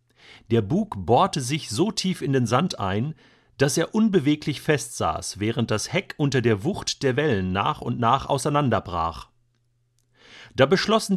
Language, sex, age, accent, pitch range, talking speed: German, male, 40-59, German, 120-155 Hz, 150 wpm